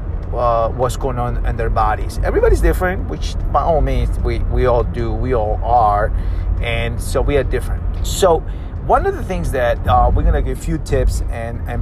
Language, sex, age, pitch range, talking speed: English, male, 30-49, 85-115 Hz, 210 wpm